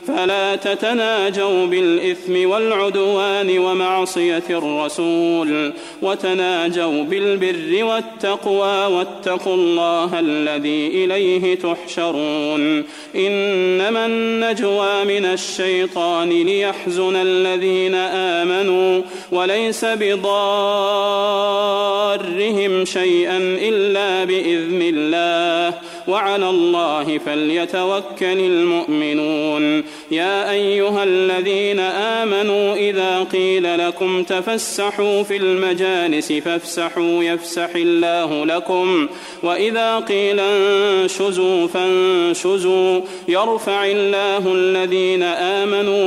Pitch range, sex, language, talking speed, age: 170-200 Hz, male, Arabic, 70 wpm, 30-49